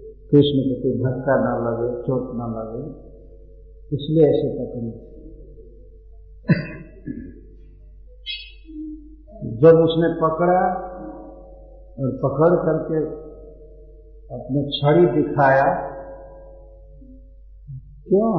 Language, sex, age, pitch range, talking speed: Hindi, male, 50-69, 120-155 Hz, 75 wpm